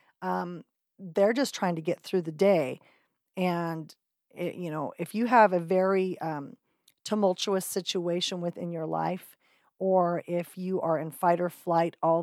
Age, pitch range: 40-59, 170-200 Hz